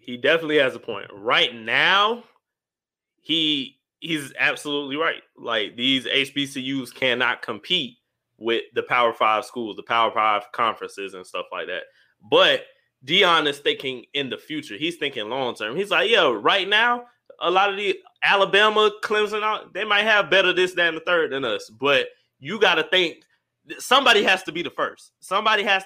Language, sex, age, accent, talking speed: English, male, 20-39, American, 170 wpm